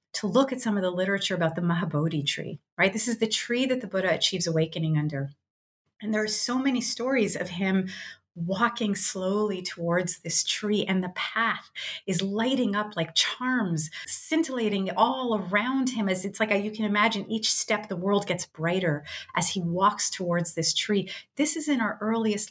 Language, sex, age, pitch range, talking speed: English, female, 30-49, 180-230 Hz, 185 wpm